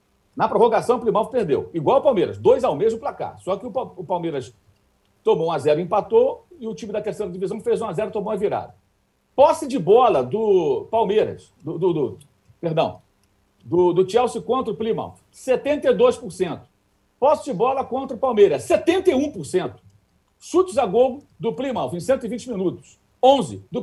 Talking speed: 170 wpm